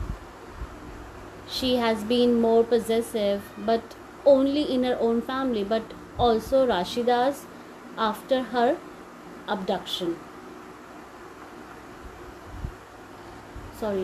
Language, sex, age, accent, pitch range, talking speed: English, female, 30-49, Indian, 215-310 Hz, 75 wpm